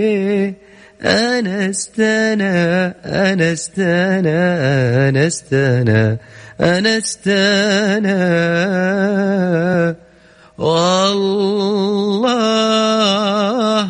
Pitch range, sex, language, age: 165-205 Hz, male, Arabic, 30-49